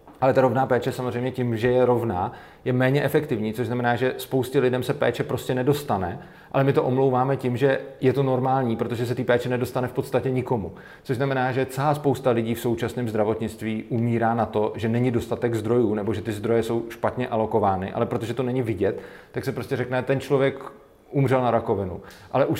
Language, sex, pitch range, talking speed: Slovak, male, 115-130 Hz, 205 wpm